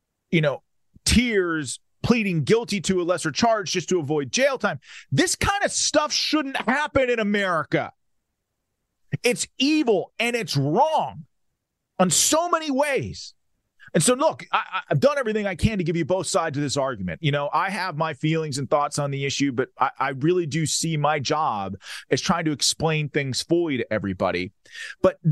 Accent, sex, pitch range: American, male, 160-225 Hz